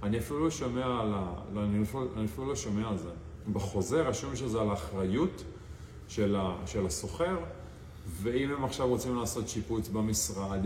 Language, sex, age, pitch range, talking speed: Hebrew, male, 40-59, 95-115 Hz, 145 wpm